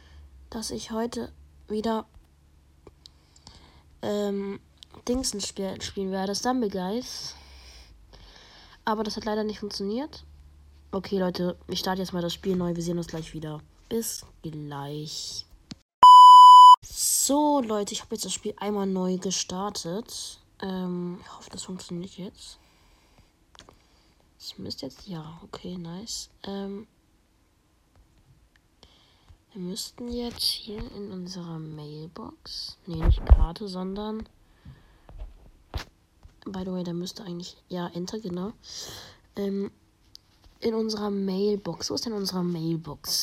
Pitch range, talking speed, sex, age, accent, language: 140-210 Hz, 120 wpm, female, 20-39, German, German